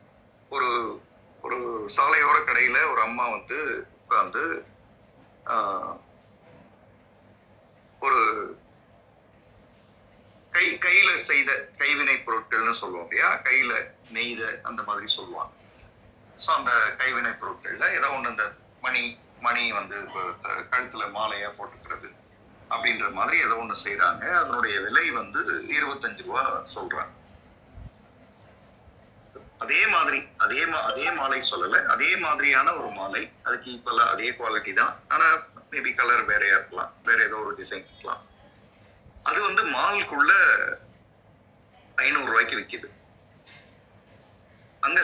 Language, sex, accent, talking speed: Tamil, male, native, 105 wpm